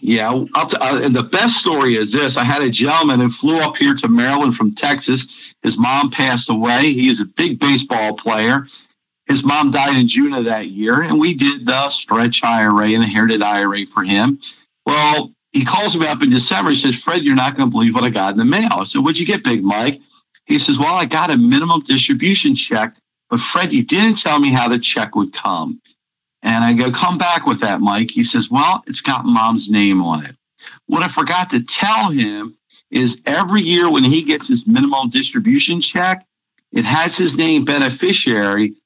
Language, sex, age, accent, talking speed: English, male, 50-69, American, 210 wpm